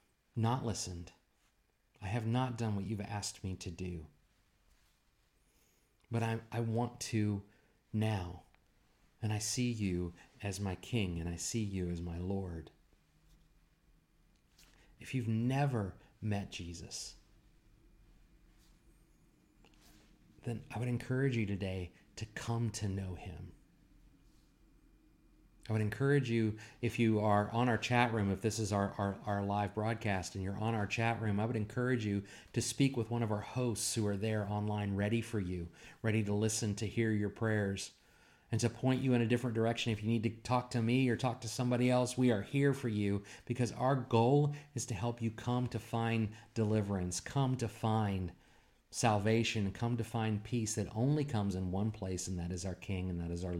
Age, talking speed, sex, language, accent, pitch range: 40-59, 175 wpm, male, English, American, 100-120 Hz